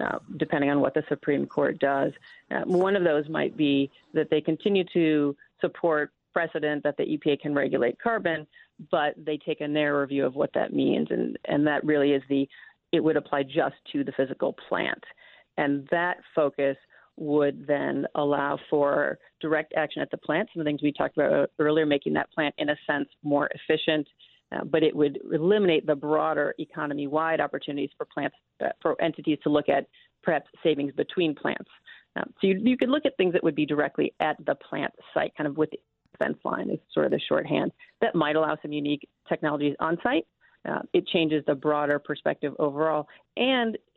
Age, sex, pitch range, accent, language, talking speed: 40-59, female, 145-165 Hz, American, English, 195 wpm